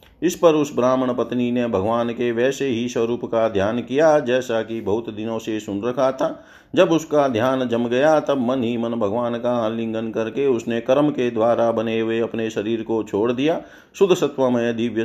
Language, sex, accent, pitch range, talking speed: Hindi, male, native, 115-135 Hz, 195 wpm